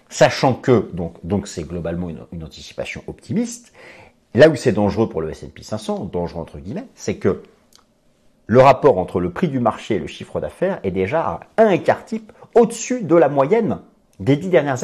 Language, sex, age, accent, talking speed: French, male, 50-69, French, 190 wpm